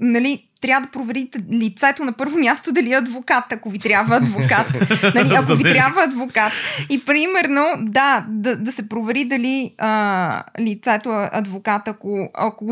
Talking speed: 155 wpm